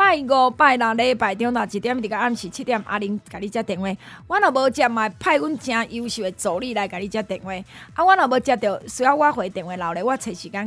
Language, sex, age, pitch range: Chinese, female, 20-39, 210-295 Hz